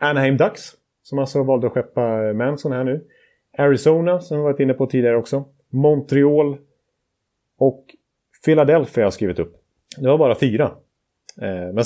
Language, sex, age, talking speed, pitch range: Swedish, male, 30-49, 145 wpm, 105-135 Hz